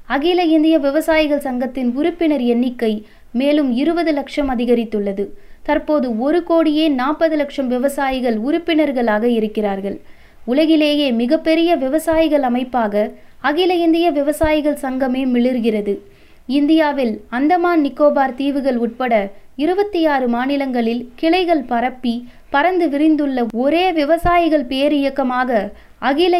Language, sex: Tamil, female